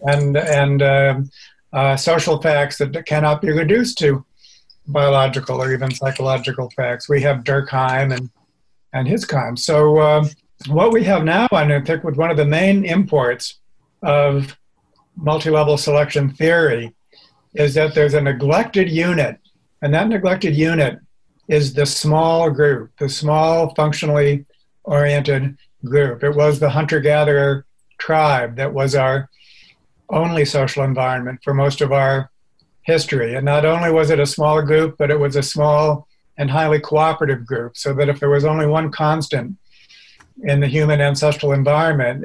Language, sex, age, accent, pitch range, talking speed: English, male, 60-79, American, 135-155 Hz, 150 wpm